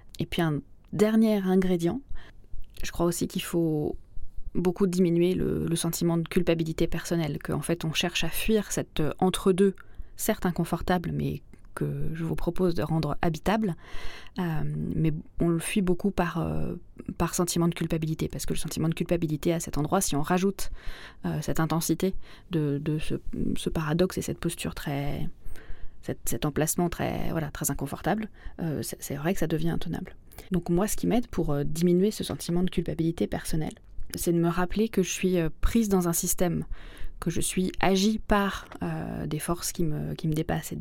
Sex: female